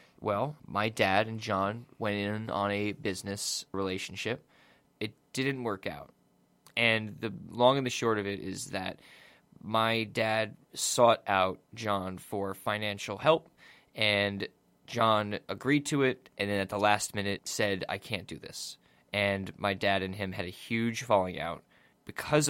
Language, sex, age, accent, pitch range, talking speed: English, male, 20-39, American, 95-115 Hz, 160 wpm